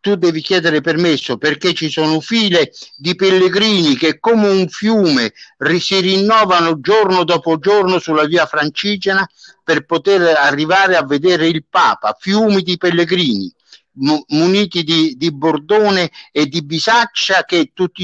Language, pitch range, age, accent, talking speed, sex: Italian, 155-195 Hz, 60-79, native, 135 wpm, male